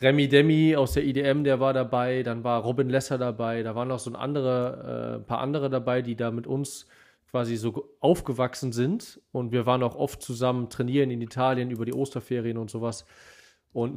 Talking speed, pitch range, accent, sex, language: 195 wpm, 120-140 Hz, German, male, German